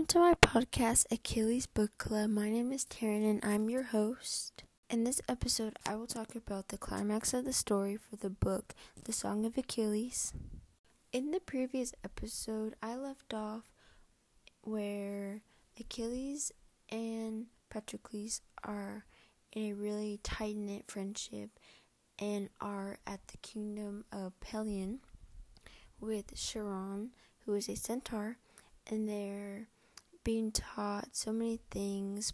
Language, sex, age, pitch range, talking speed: English, female, 20-39, 210-235 Hz, 130 wpm